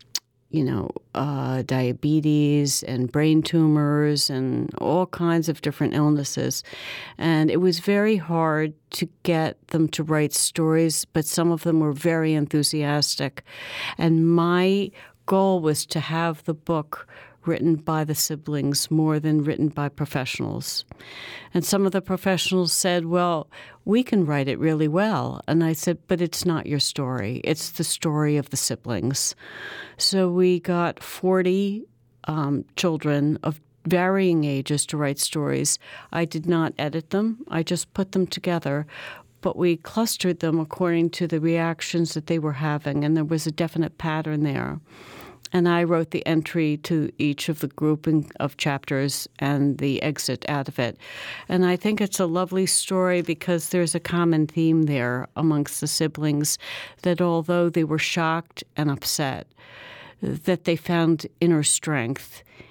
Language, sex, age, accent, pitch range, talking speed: English, female, 60-79, American, 150-175 Hz, 155 wpm